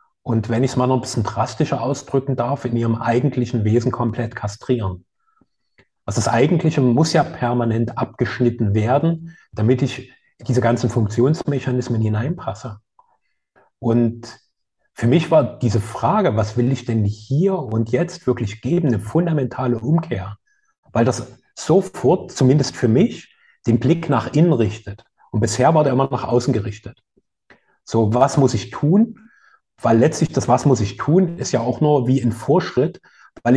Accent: German